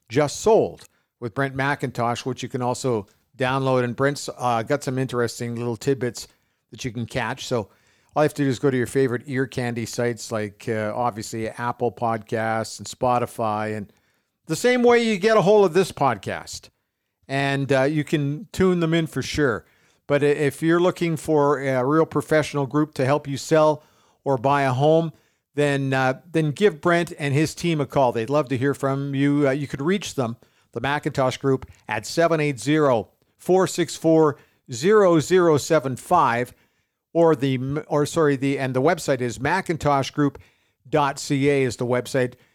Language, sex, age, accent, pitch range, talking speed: English, male, 50-69, American, 125-155 Hz, 170 wpm